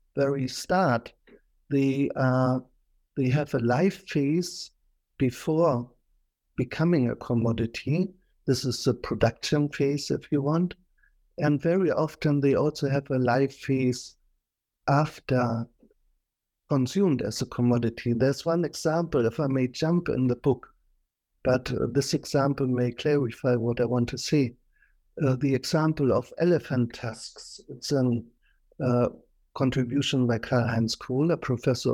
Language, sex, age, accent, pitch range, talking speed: English, male, 60-79, German, 125-150 Hz, 135 wpm